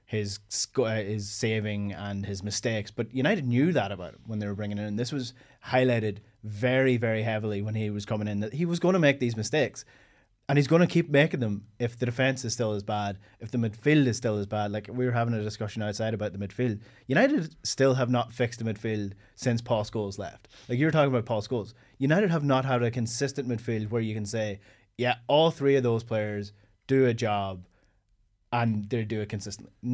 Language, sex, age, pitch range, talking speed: English, male, 30-49, 105-125 Hz, 225 wpm